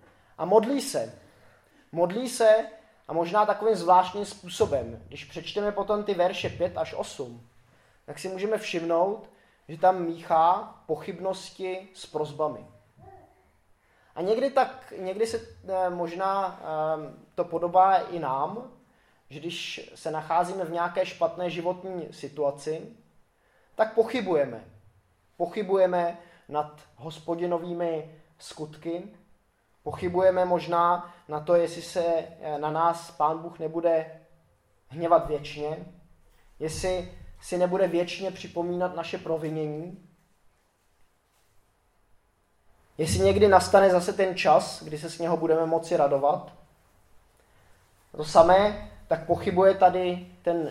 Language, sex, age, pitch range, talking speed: Czech, male, 20-39, 150-185 Hz, 110 wpm